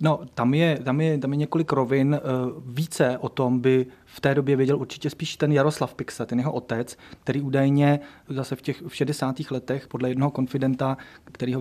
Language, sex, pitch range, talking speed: Czech, male, 125-140 Hz, 190 wpm